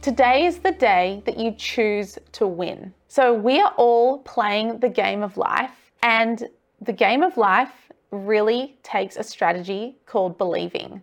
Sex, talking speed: female, 160 wpm